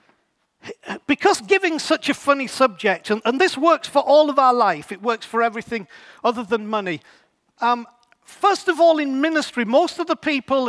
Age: 40-59